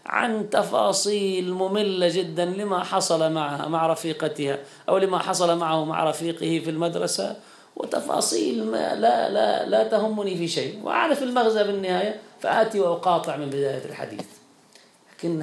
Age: 40-59